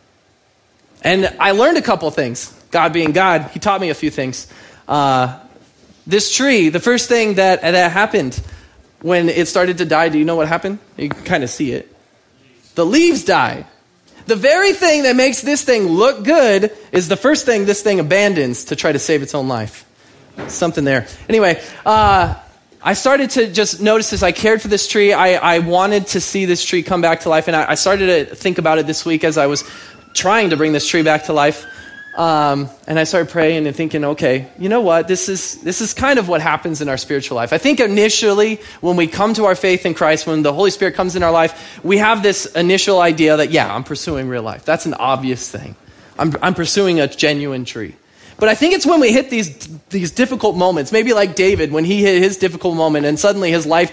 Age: 20-39